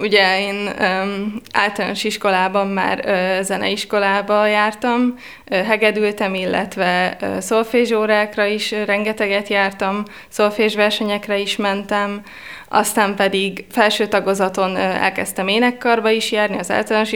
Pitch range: 195-225 Hz